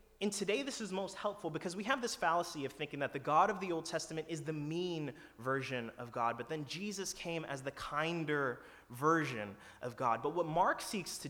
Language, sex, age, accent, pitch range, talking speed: English, male, 20-39, American, 110-180 Hz, 220 wpm